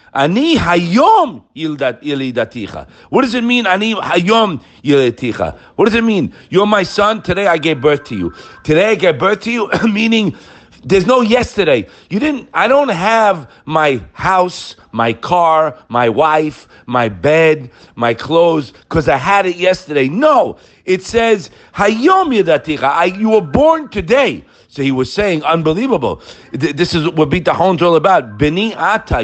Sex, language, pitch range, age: male, English, 145-200 Hz, 50-69